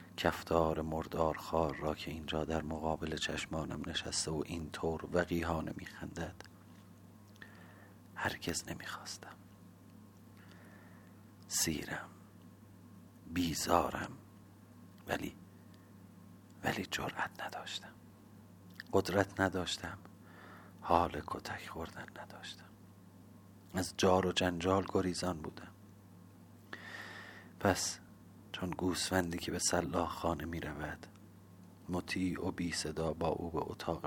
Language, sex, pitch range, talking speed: Persian, male, 85-100 Hz, 90 wpm